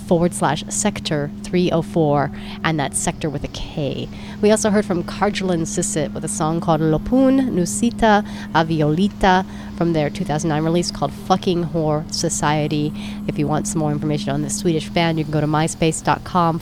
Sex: female